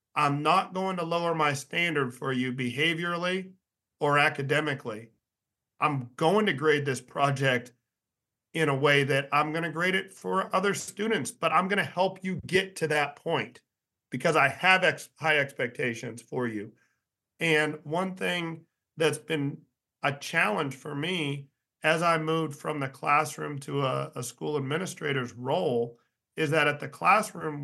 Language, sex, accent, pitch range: English, male, American, 130-160 Hz